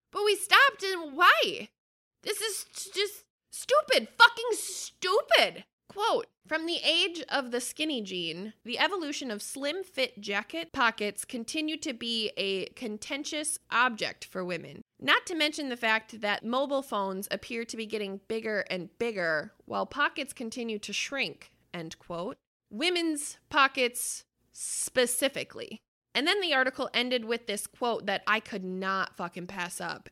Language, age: English, 20-39